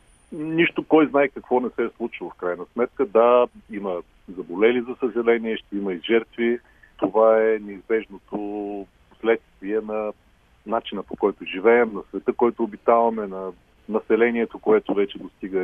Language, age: Bulgarian, 40-59